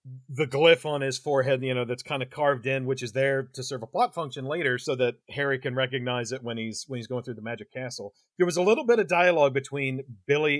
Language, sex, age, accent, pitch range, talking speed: English, male, 40-59, American, 115-140 Hz, 255 wpm